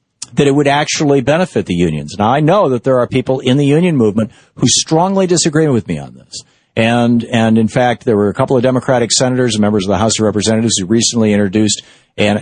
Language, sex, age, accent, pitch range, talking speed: English, male, 50-69, American, 105-125 Hz, 225 wpm